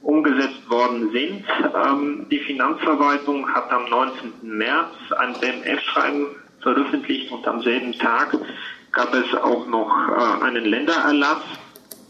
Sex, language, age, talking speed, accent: male, German, 40-59, 120 wpm, German